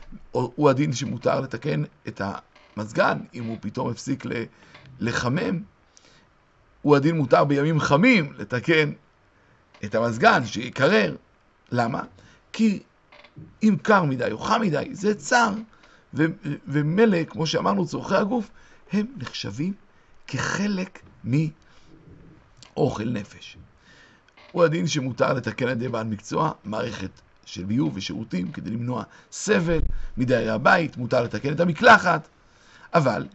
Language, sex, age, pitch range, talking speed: Hebrew, male, 50-69, 135-185 Hz, 110 wpm